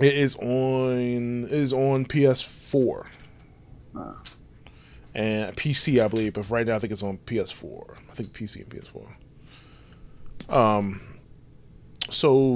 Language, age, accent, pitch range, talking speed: English, 20-39, American, 110-135 Hz, 125 wpm